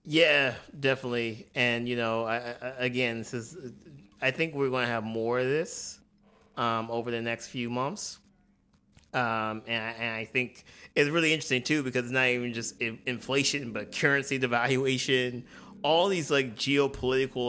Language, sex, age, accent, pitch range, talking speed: English, male, 30-49, American, 115-135 Hz, 155 wpm